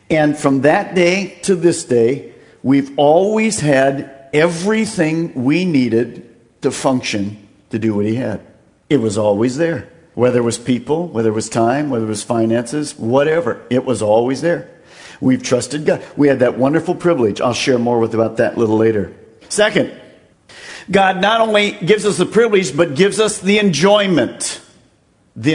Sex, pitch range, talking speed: male, 130-205 Hz, 170 wpm